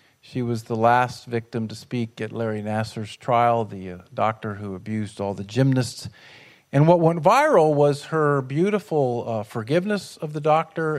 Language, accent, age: English, American, 50-69